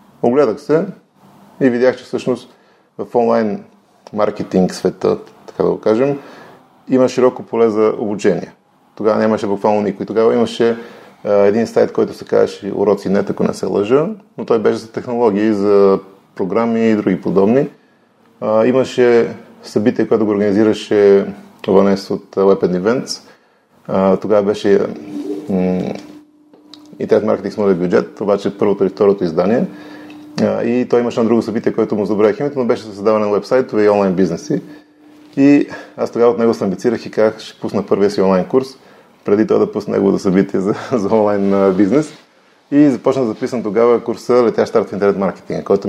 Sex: male